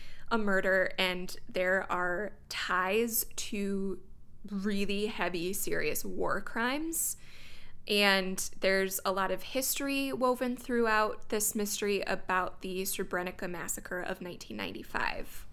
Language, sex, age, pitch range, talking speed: English, female, 20-39, 185-230 Hz, 110 wpm